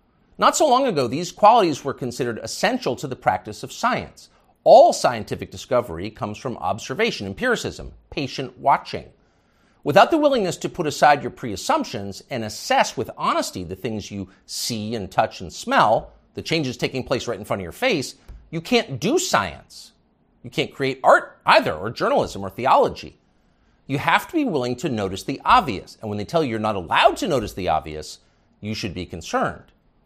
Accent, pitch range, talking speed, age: American, 95-135 Hz, 180 wpm, 50-69